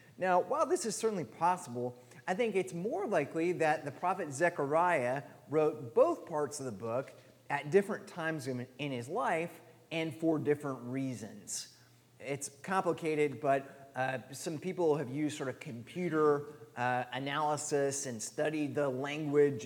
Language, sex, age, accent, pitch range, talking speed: English, male, 30-49, American, 130-170 Hz, 145 wpm